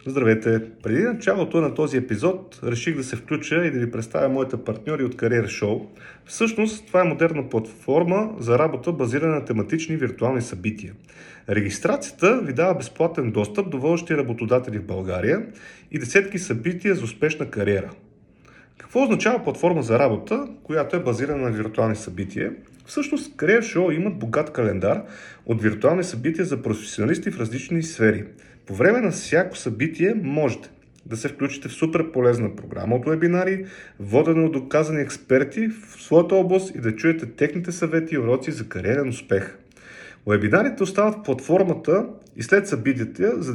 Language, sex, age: Bulgarian, male, 40-59